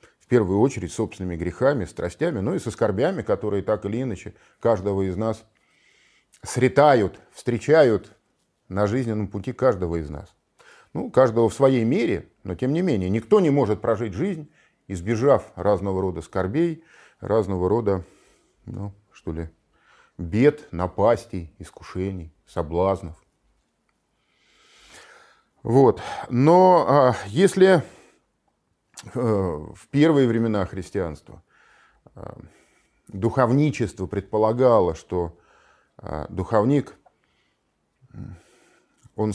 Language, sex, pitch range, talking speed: Russian, male, 95-130 Hz, 100 wpm